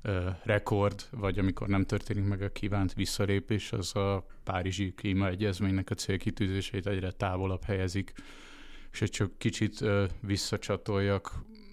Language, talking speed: Hungarian, 120 wpm